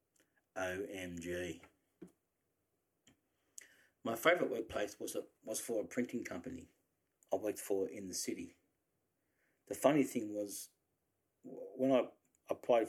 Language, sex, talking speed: English, male, 105 wpm